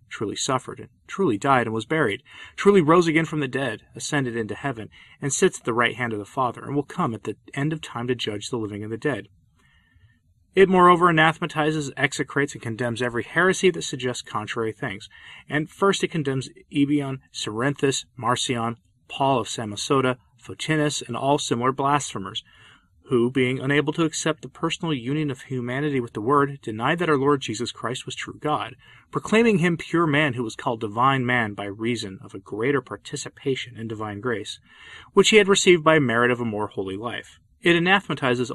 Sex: male